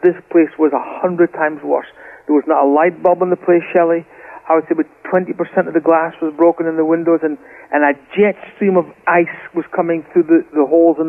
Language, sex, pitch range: English, male, 170-215 Hz